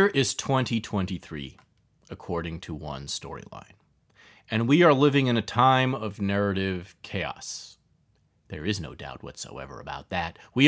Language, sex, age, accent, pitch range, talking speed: English, male, 30-49, American, 90-140 Hz, 140 wpm